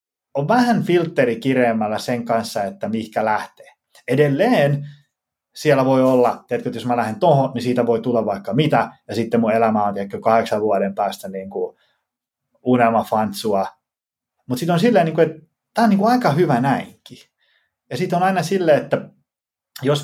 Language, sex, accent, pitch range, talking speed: Finnish, male, native, 120-160 Hz, 160 wpm